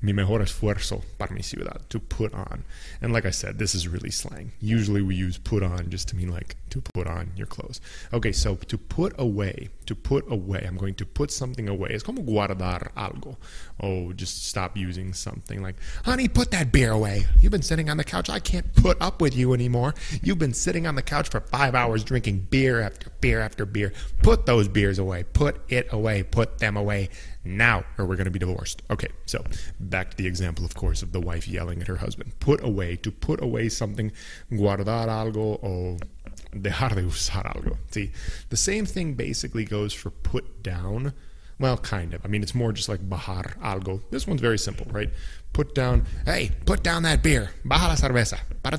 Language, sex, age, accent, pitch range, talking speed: English, male, 20-39, American, 90-120 Hz, 210 wpm